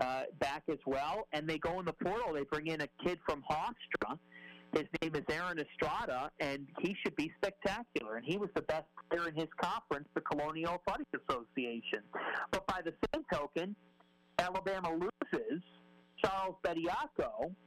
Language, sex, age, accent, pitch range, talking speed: English, male, 40-59, American, 145-225 Hz, 165 wpm